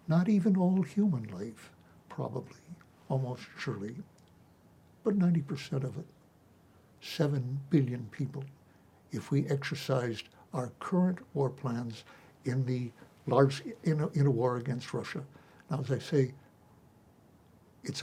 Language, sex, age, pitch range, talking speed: English, male, 60-79, 125-155 Hz, 120 wpm